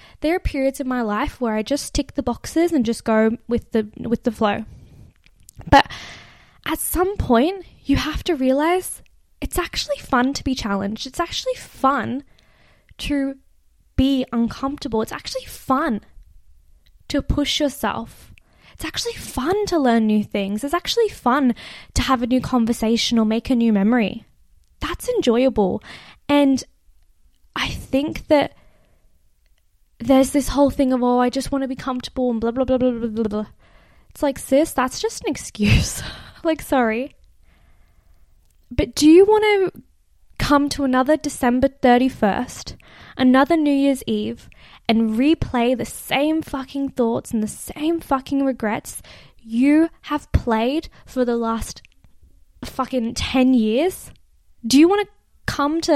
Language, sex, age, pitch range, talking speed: English, female, 10-29, 230-290 Hz, 150 wpm